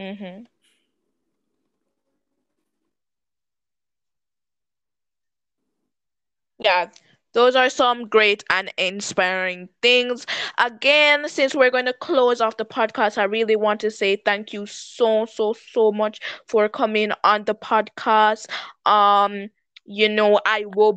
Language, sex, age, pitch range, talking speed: English, female, 20-39, 185-235 Hz, 115 wpm